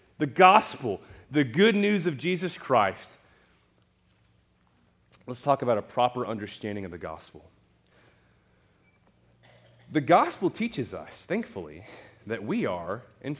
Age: 30-49